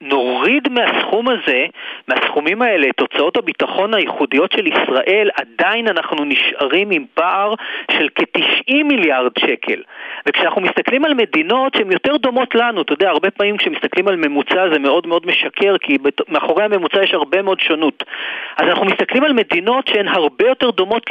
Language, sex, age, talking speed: Hebrew, male, 40-59, 155 wpm